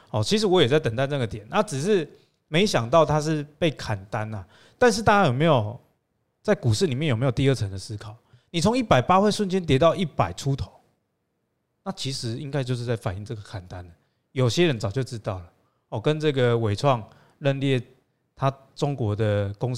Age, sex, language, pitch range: 20-39, male, Chinese, 115-165 Hz